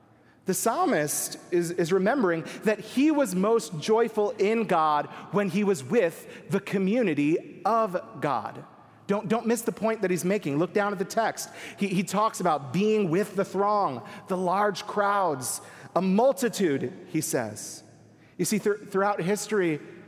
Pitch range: 160-200 Hz